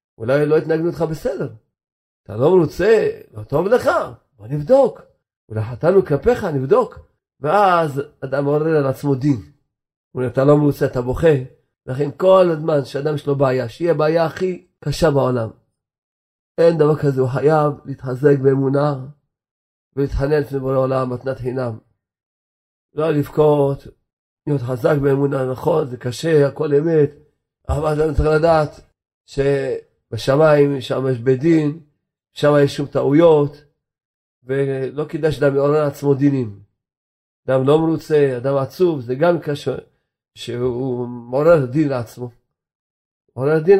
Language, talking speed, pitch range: Hebrew, 135 wpm, 130-165 Hz